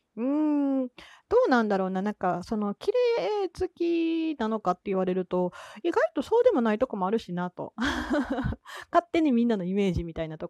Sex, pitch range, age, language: female, 180-280 Hz, 30-49, Japanese